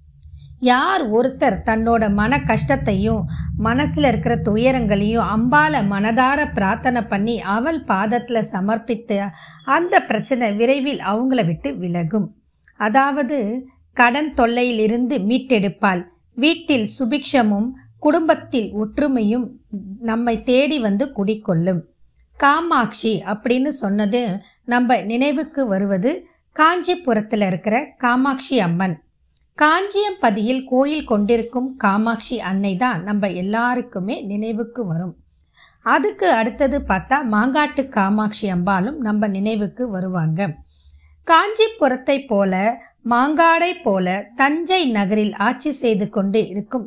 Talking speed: 90 wpm